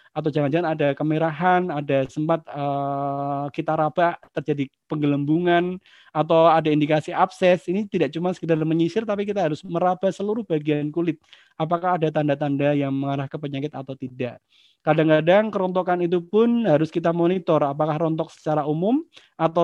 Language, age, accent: Indonesian, 20-39, native